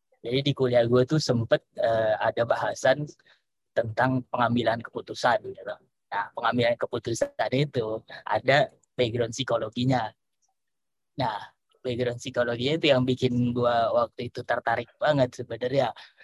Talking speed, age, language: 115 wpm, 20-39, Indonesian